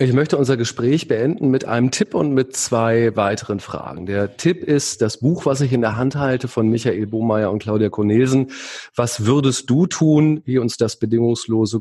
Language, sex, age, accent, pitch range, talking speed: German, male, 40-59, German, 110-130 Hz, 195 wpm